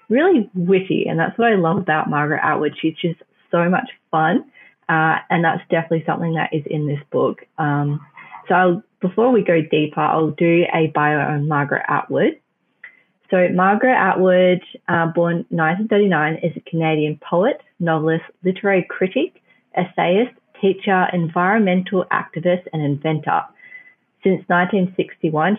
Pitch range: 160-195 Hz